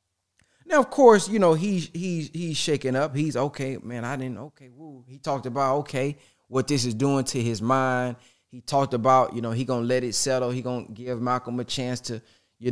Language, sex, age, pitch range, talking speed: English, male, 20-39, 95-130 Hz, 225 wpm